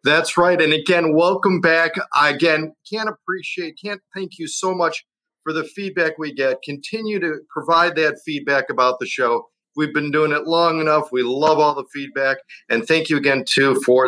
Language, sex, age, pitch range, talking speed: English, male, 40-59, 145-185 Hz, 190 wpm